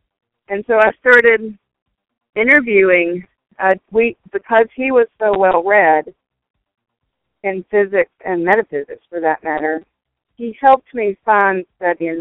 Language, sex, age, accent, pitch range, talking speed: English, female, 50-69, American, 165-210 Hz, 125 wpm